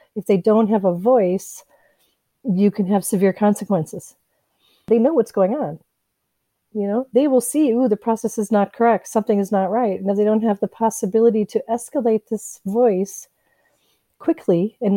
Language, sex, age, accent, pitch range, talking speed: English, female, 40-59, American, 200-235 Hz, 175 wpm